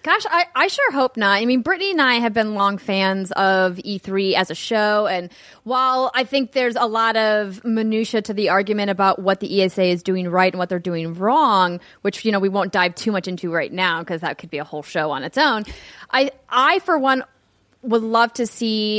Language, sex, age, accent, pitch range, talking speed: English, female, 20-39, American, 190-245 Hz, 230 wpm